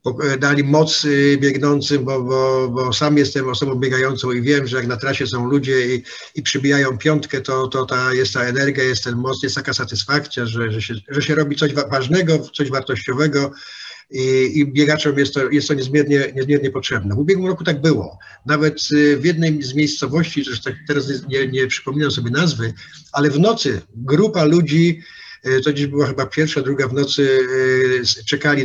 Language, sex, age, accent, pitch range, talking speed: Polish, male, 50-69, native, 130-150 Hz, 180 wpm